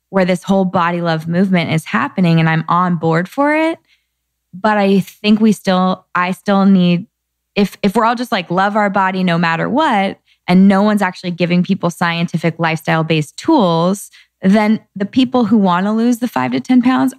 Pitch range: 175-215 Hz